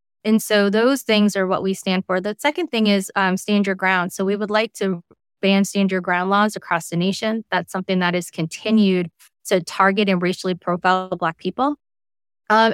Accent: American